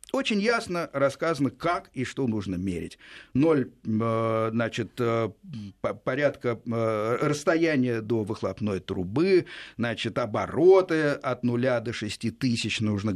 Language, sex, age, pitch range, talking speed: Russian, male, 50-69, 110-170 Hz, 105 wpm